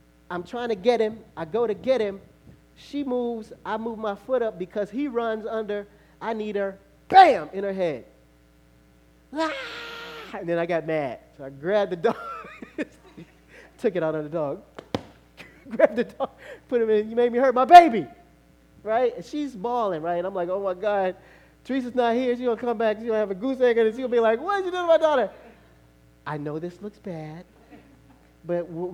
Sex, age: male, 30-49